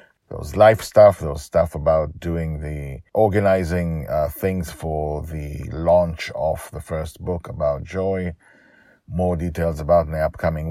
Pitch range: 75-90 Hz